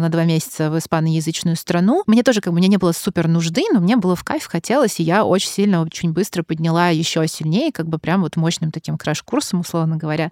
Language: Russian